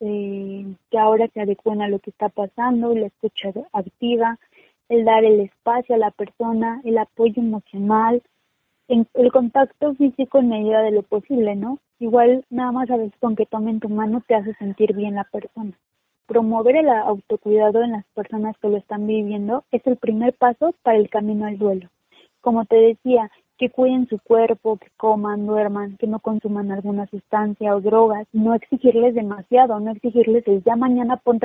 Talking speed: 175 wpm